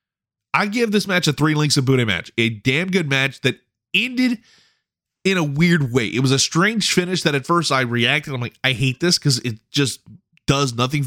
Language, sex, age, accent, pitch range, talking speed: English, male, 30-49, American, 125-170 Hz, 215 wpm